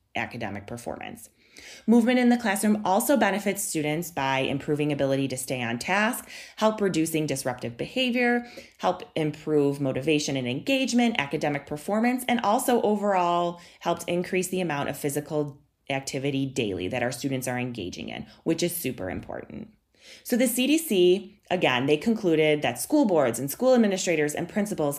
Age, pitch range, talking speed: 30-49, 135-190 Hz, 150 wpm